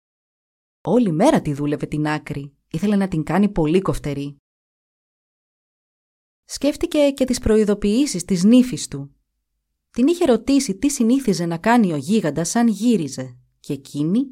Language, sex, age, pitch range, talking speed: Greek, female, 30-49, 150-230 Hz, 135 wpm